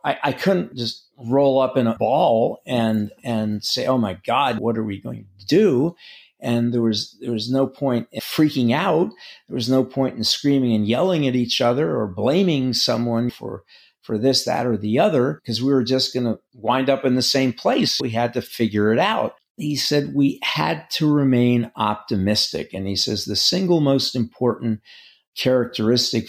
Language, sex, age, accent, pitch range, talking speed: English, male, 50-69, American, 110-130 Hz, 190 wpm